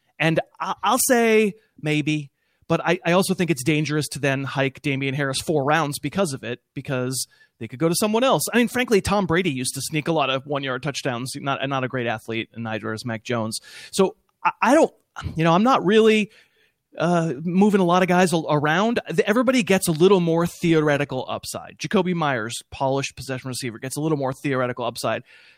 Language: English